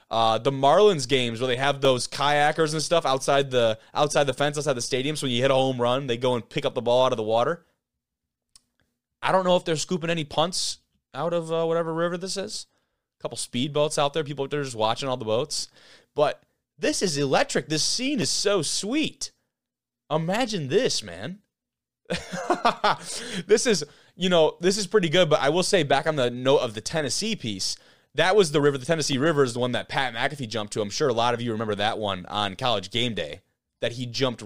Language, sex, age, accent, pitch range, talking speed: English, male, 20-39, American, 110-160 Hz, 225 wpm